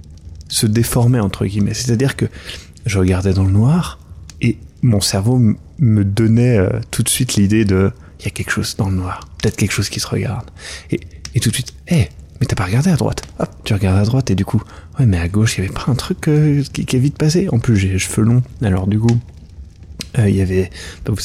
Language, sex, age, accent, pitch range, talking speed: French, male, 30-49, French, 90-115 Hz, 250 wpm